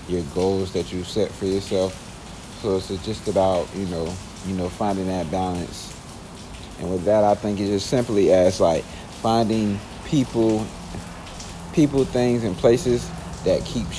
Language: English